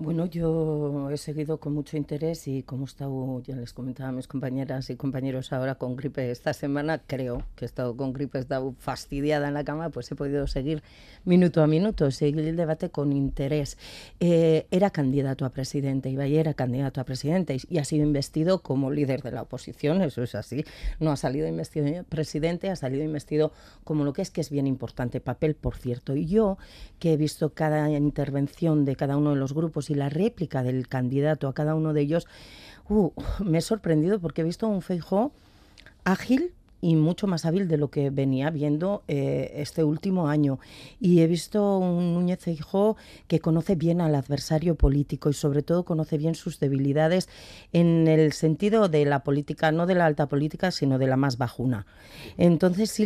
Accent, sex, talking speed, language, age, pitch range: Spanish, female, 195 wpm, Spanish, 40-59, 140-170 Hz